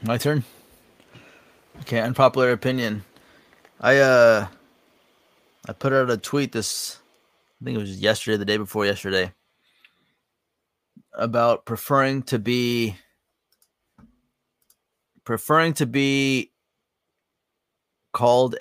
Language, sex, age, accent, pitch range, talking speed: English, male, 30-49, American, 100-125 Hz, 95 wpm